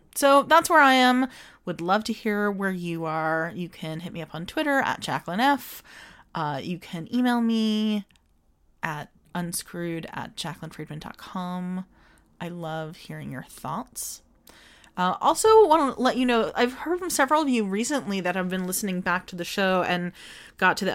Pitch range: 165-225 Hz